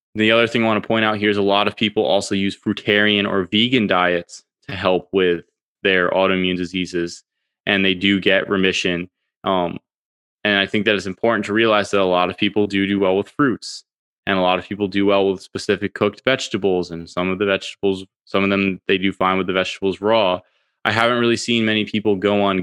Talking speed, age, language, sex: 225 wpm, 20-39, English, male